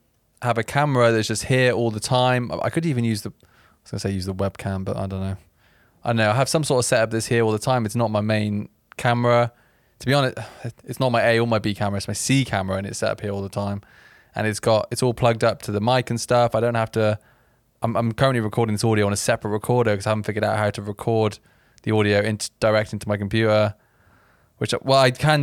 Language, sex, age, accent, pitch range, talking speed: English, male, 20-39, British, 105-125 Hz, 265 wpm